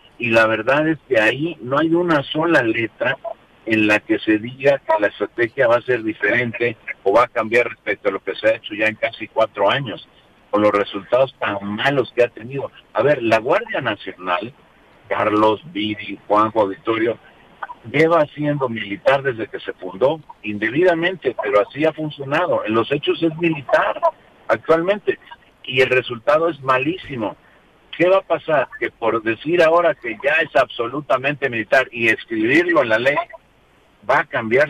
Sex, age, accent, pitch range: male, 60-79, Mexican, 115-180 Hz